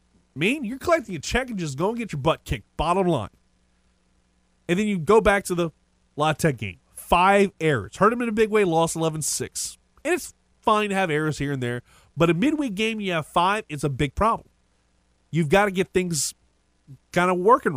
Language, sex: English, male